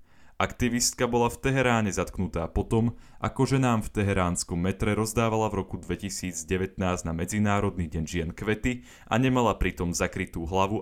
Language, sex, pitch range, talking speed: Slovak, male, 90-110 Hz, 145 wpm